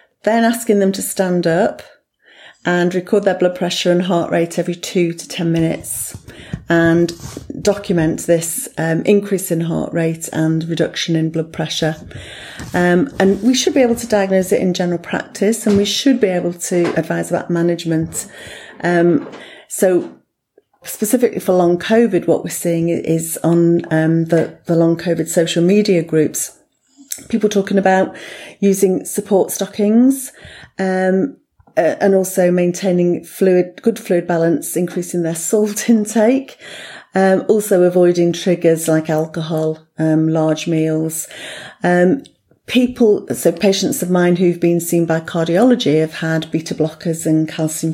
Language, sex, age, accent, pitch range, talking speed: English, female, 40-59, British, 160-195 Hz, 145 wpm